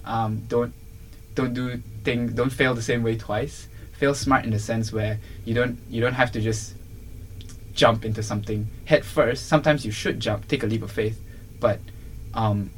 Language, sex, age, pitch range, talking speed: English, male, 10-29, 105-115 Hz, 190 wpm